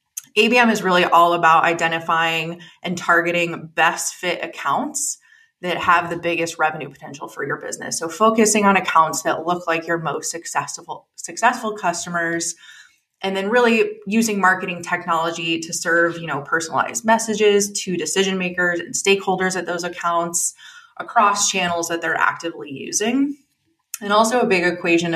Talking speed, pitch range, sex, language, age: 150 wpm, 165-200 Hz, female, English, 20-39